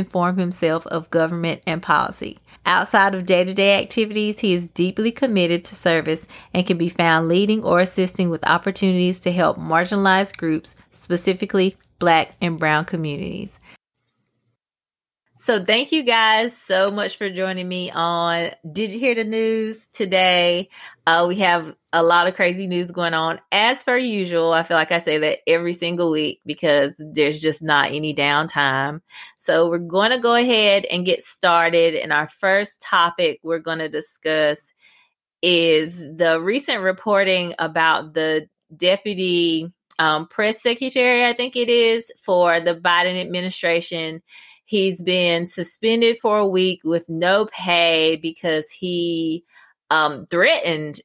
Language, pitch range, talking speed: English, 160-190 Hz, 150 wpm